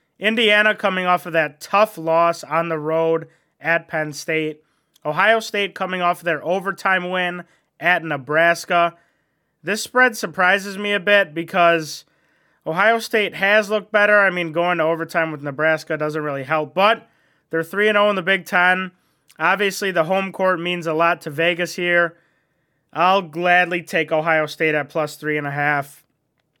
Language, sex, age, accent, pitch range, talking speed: English, male, 30-49, American, 155-190 Hz, 165 wpm